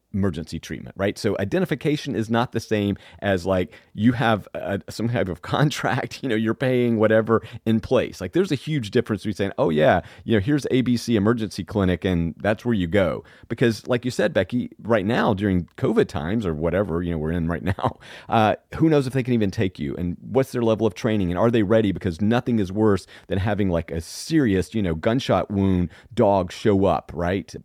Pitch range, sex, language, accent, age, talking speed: 95-120 Hz, male, English, American, 40-59, 215 wpm